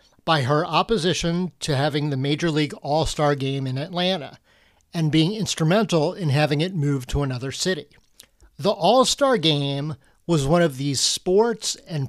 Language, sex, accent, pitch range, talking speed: English, male, American, 140-180 Hz, 155 wpm